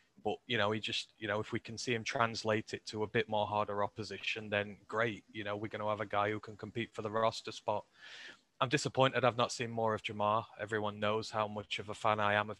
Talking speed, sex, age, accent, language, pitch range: 260 wpm, male, 20-39, British, English, 105-125 Hz